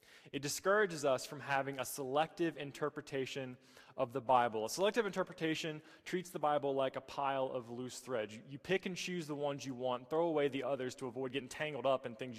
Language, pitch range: English, 130-170 Hz